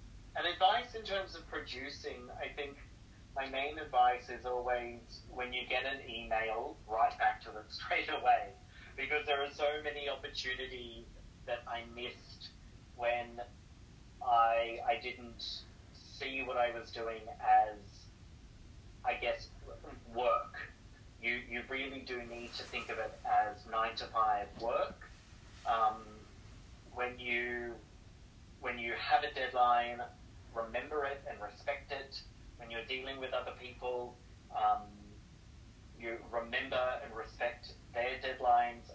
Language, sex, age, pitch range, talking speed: English, male, 30-49, 110-125 Hz, 130 wpm